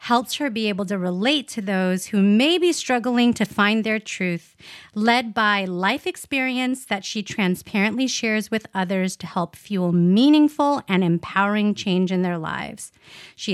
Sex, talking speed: female, 165 wpm